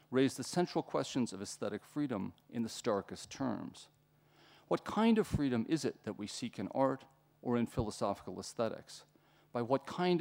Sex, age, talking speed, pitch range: male, 40-59, 170 wpm, 100-140 Hz